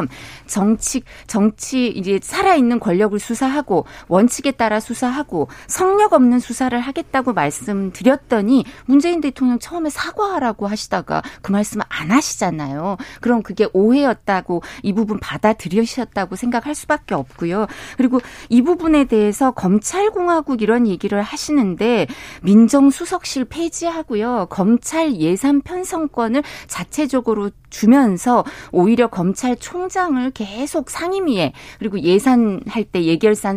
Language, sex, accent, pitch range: Korean, female, native, 205-275 Hz